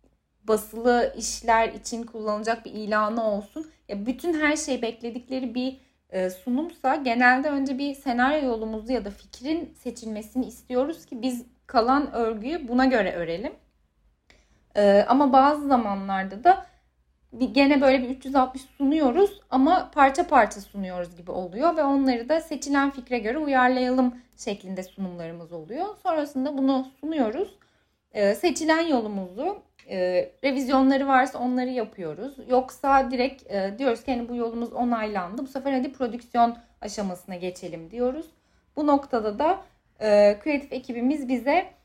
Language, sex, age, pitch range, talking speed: Turkish, female, 10-29, 215-270 Hz, 130 wpm